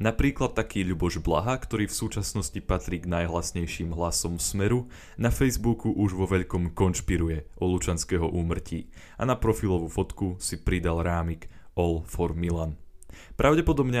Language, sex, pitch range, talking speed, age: Slovak, male, 85-110 Hz, 135 wpm, 20-39